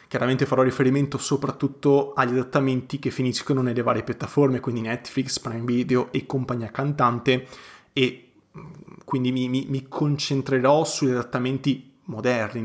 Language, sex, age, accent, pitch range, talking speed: Italian, male, 20-39, native, 125-140 Hz, 130 wpm